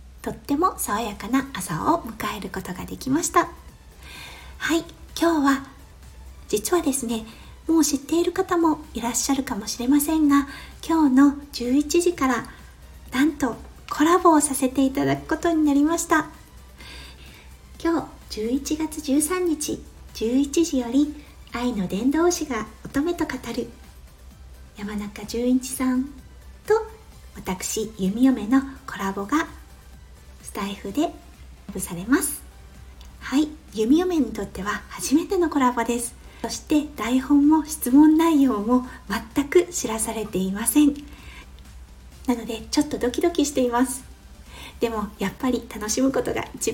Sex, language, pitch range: female, Japanese, 220-305 Hz